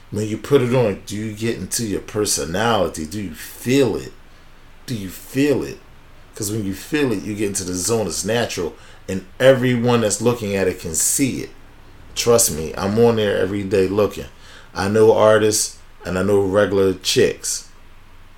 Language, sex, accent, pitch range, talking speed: English, male, American, 95-115 Hz, 185 wpm